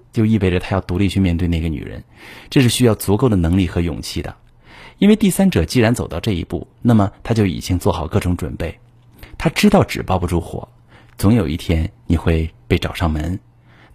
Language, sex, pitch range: Chinese, male, 95-125 Hz